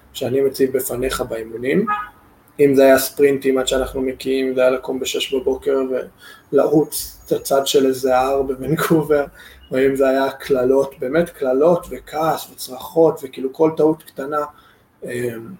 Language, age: Hebrew, 20-39